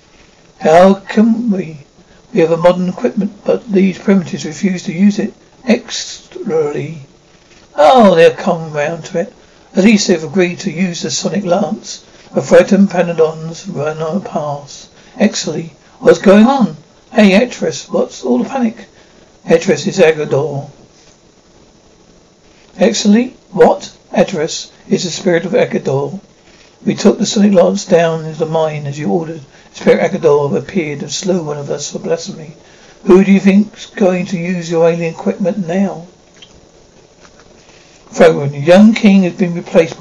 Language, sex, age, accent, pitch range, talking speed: English, male, 60-79, British, 165-200 Hz, 150 wpm